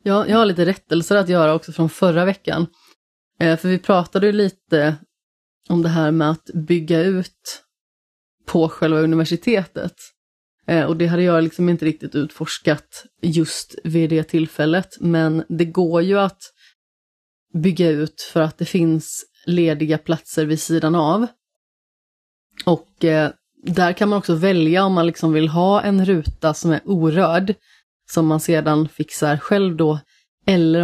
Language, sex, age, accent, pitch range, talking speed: Swedish, female, 30-49, native, 155-175 Hz, 145 wpm